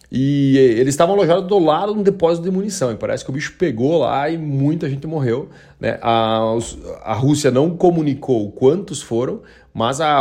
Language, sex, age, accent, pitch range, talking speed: Portuguese, male, 30-49, Brazilian, 120-165 Hz, 190 wpm